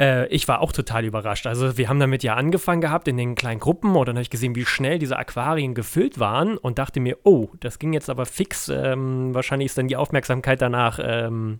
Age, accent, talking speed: 30-49, German, 230 wpm